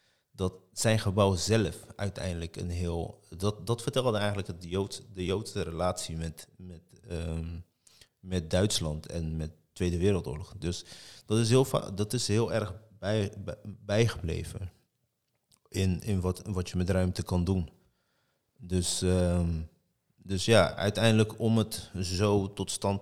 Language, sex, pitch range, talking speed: Dutch, male, 85-105 Hz, 145 wpm